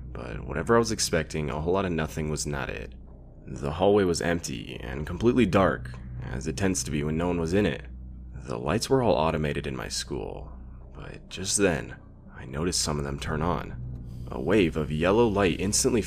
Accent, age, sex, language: American, 20-39, male, English